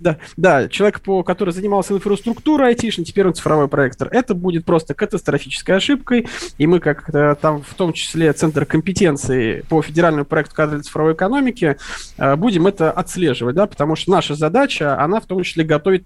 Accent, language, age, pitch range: native, Russian, 20-39, 150-185 Hz